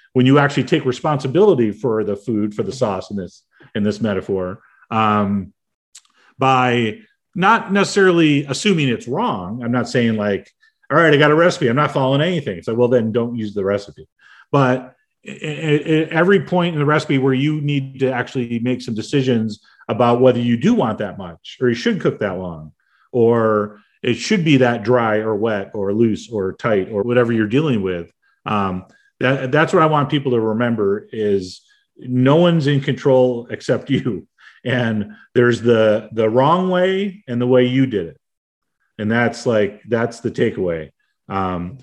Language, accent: English, American